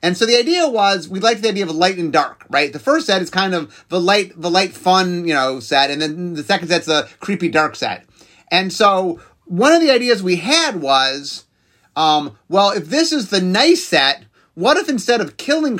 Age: 30-49